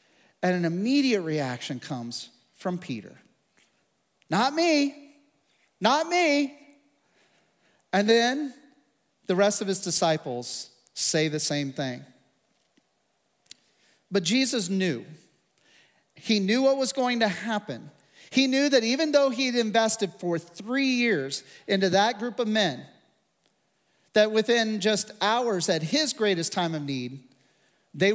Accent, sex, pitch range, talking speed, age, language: American, male, 170-245 Hz, 125 wpm, 40-59, English